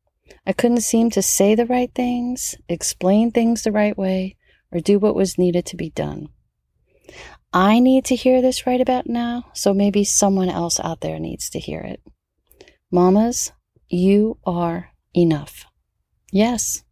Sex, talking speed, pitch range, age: female, 155 wpm, 175-235 Hz, 40-59